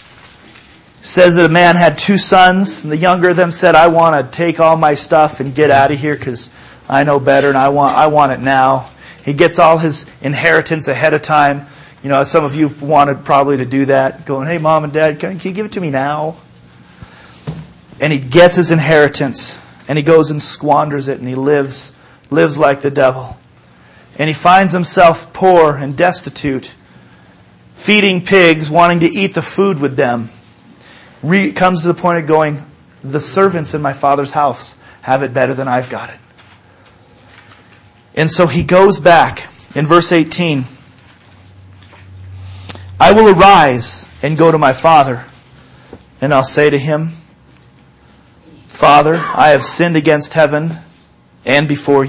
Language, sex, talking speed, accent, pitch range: English, male, 170 wpm, American, 130-160 Hz